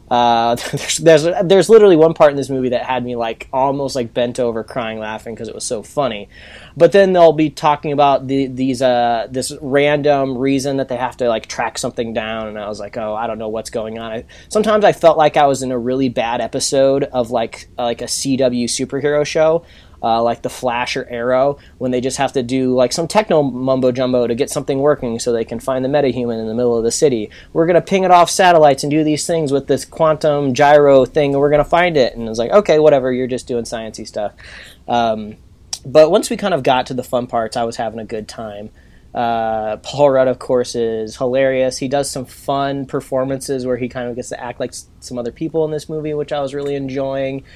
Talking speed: 235 wpm